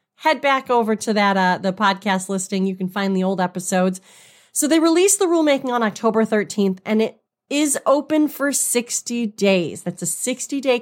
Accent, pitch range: American, 195-265 Hz